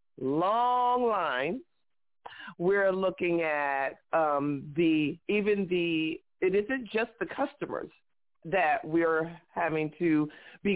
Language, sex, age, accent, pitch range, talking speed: English, female, 50-69, American, 170-260 Hz, 105 wpm